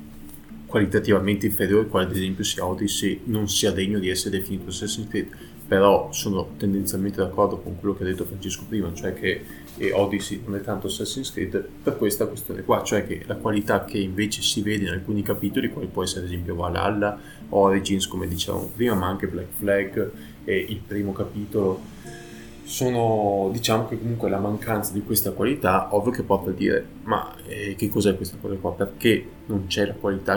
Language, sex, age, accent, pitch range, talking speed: Italian, male, 20-39, native, 95-105 Hz, 185 wpm